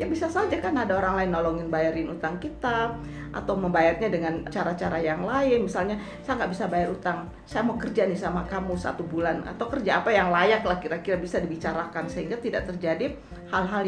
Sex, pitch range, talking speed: female, 175-235 Hz, 190 wpm